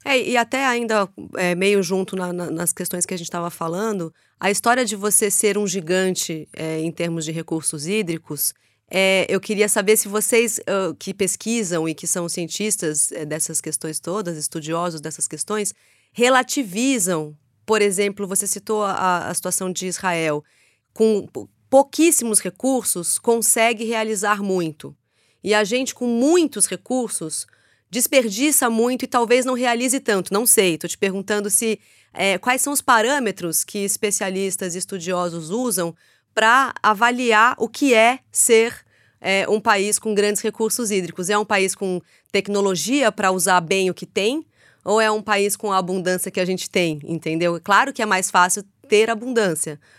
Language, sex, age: Portuguese, female, 30-49